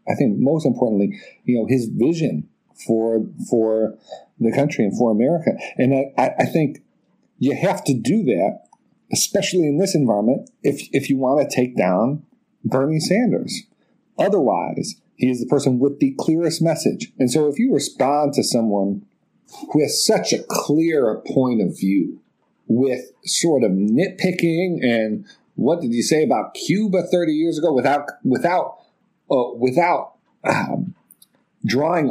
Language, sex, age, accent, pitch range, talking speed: English, male, 50-69, American, 130-170 Hz, 155 wpm